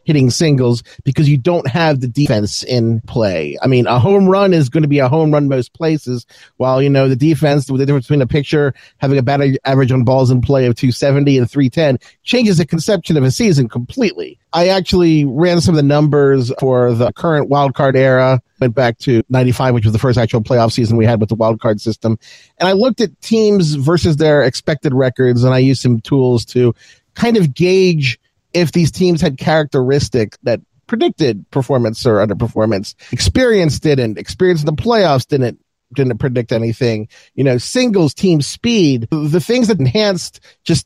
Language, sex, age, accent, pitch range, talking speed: English, male, 40-59, American, 125-160 Hz, 190 wpm